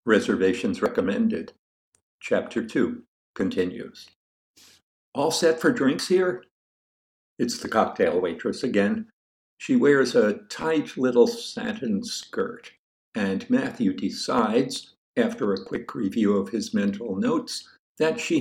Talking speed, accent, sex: 115 wpm, American, male